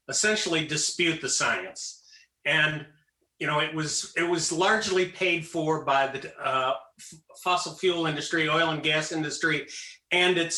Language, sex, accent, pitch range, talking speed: English, male, American, 150-190 Hz, 155 wpm